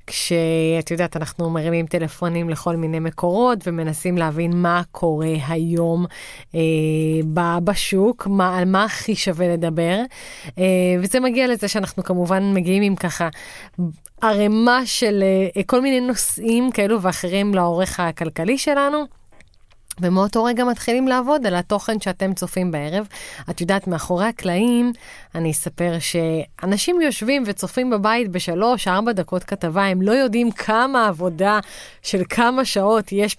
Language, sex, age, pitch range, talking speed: Hebrew, female, 30-49, 175-225 Hz, 130 wpm